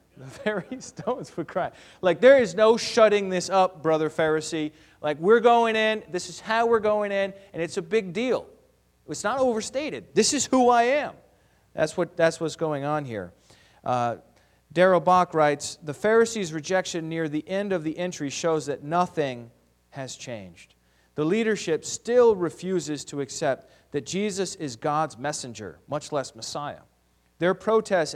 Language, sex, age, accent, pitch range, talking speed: English, male, 40-59, American, 145-190 Hz, 165 wpm